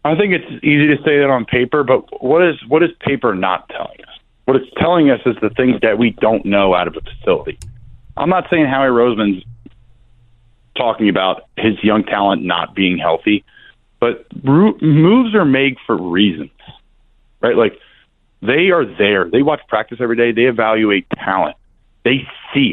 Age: 40-59